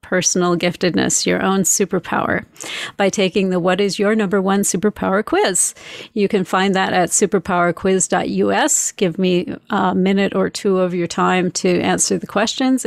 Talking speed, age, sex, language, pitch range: 160 wpm, 40-59, female, English, 185-215 Hz